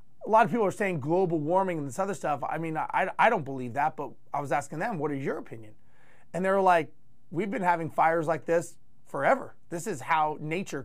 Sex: male